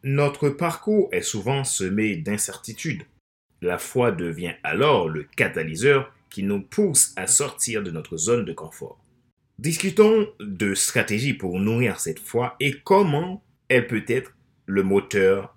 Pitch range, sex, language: 100-150 Hz, male, French